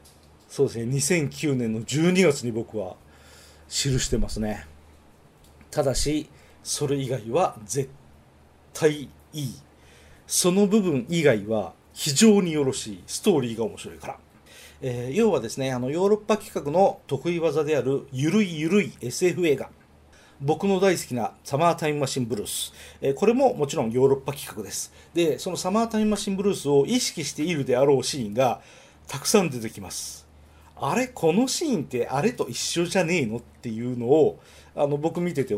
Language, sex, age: Japanese, male, 40-59